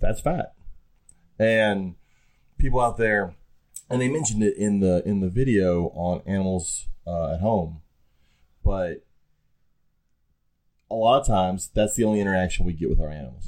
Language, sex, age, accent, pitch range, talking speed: English, male, 30-49, American, 85-110 Hz, 150 wpm